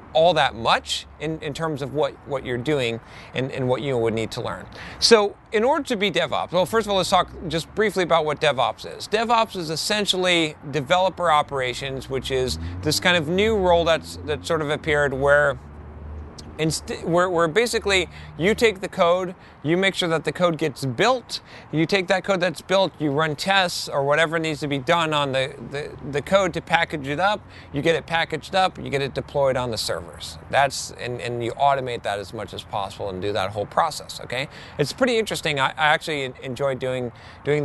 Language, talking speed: English, 210 wpm